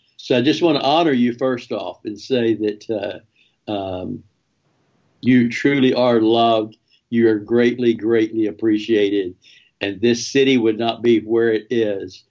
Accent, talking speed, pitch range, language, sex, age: American, 155 wpm, 110-130 Hz, English, male, 60-79